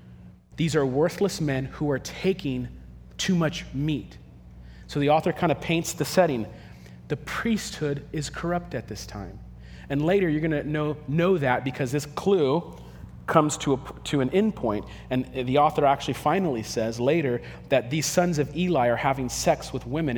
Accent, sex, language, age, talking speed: American, male, English, 40-59, 175 wpm